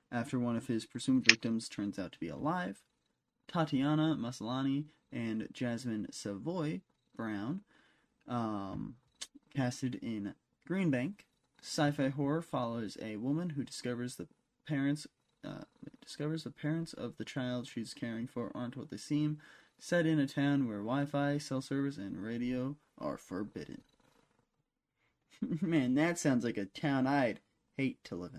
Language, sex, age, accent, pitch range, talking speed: English, male, 20-39, American, 120-150 Hz, 140 wpm